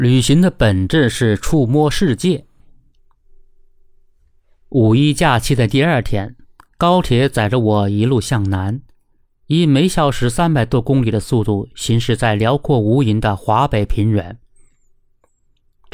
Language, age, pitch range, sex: Chinese, 50-69, 105-140 Hz, male